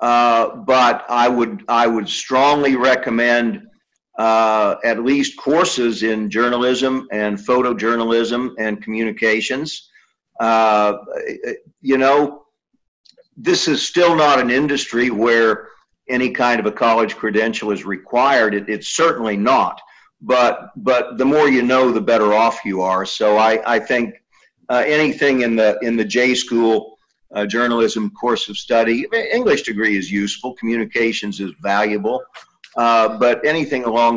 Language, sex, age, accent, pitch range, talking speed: English, male, 50-69, American, 110-130 Hz, 140 wpm